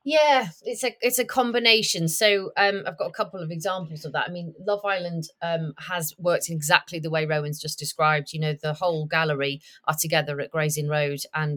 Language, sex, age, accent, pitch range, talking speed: English, female, 30-49, British, 155-180 Hz, 205 wpm